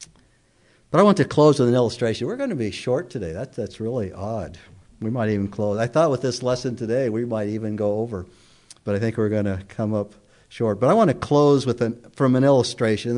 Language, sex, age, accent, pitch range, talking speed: English, male, 60-79, American, 115-150 Hz, 240 wpm